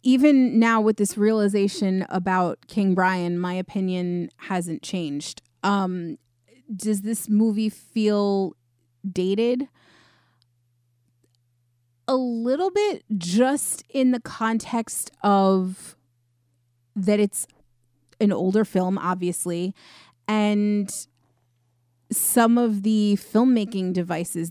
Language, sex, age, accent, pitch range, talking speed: English, female, 30-49, American, 165-210 Hz, 95 wpm